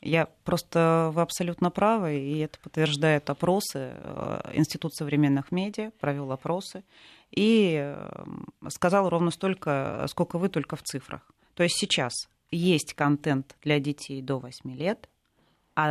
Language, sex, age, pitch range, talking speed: Russian, female, 30-49, 150-195 Hz, 130 wpm